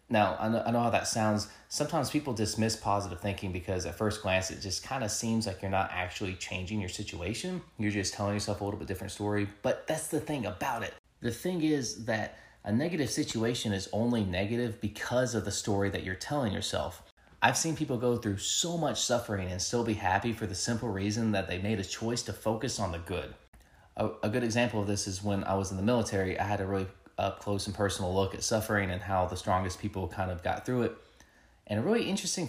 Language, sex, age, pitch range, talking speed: English, male, 20-39, 100-120 Hz, 230 wpm